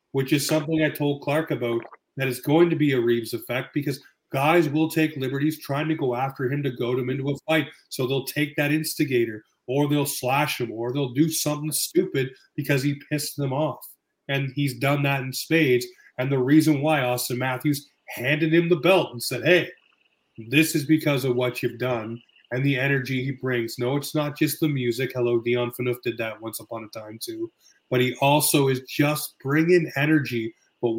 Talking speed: 205 wpm